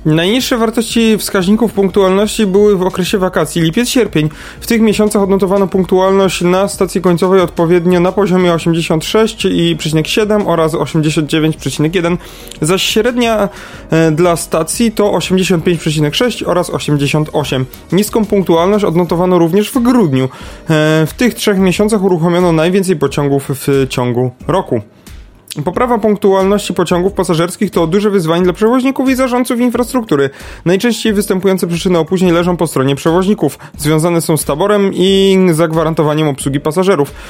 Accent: native